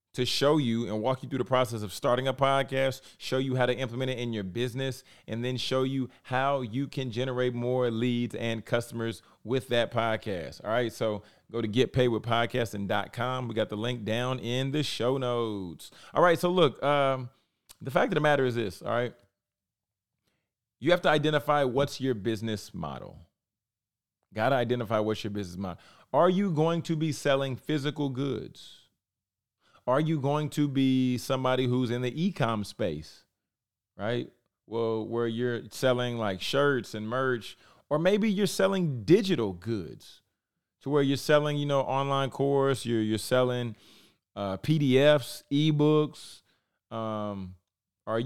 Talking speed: 165 wpm